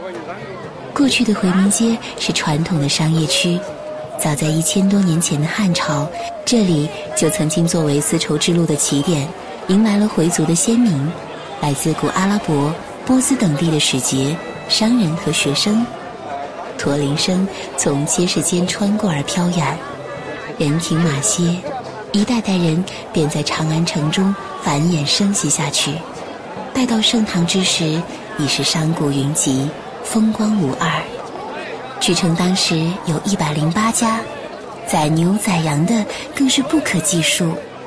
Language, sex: Chinese, female